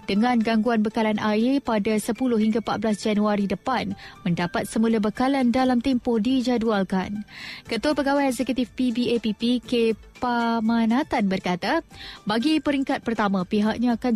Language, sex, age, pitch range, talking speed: Malay, female, 20-39, 210-245 Hz, 120 wpm